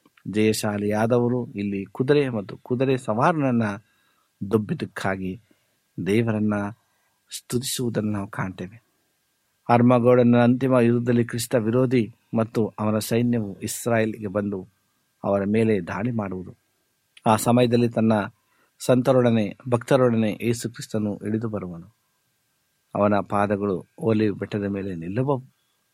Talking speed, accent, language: 90 wpm, native, Kannada